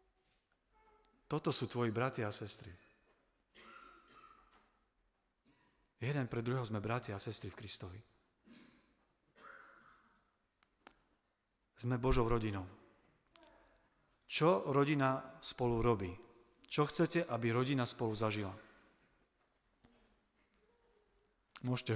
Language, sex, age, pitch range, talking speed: Slovak, male, 40-59, 115-155 Hz, 80 wpm